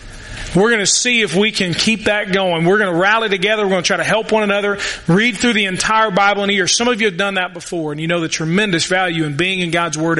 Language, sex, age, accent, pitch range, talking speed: English, male, 30-49, American, 170-215 Hz, 290 wpm